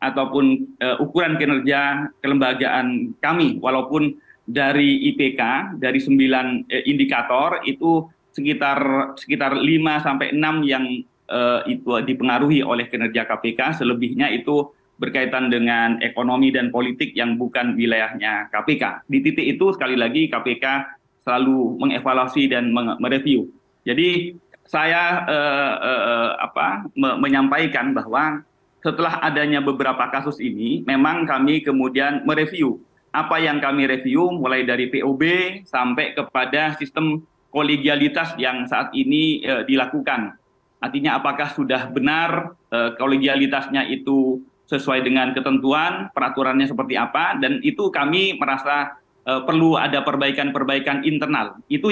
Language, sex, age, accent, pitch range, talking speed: Indonesian, male, 30-49, native, 130-160 Hz, 115 wpm